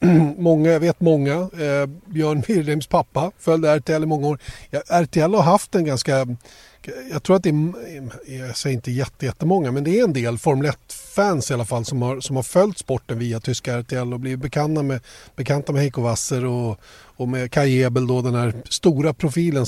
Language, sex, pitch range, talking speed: Swedish, male, 130-160 Hz, 200 wpm